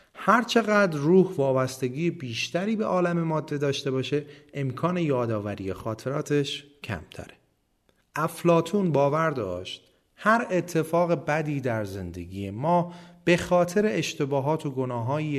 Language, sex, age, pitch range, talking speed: Persian, male, 30-49, 110-170 Hz, 105 wpm